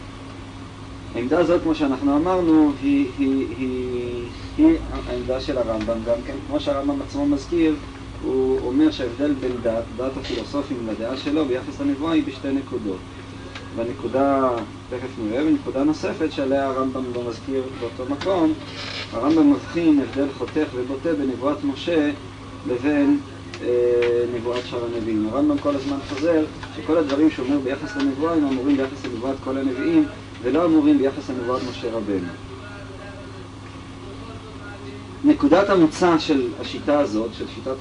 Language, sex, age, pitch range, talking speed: Hebrew, male, 20-39, 115-155 Hz, 135 wpm